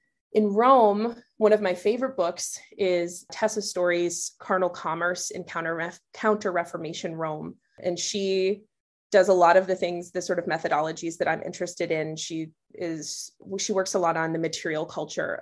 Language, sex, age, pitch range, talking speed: English, female, 20-39, 165-200 Hz, 165 wpm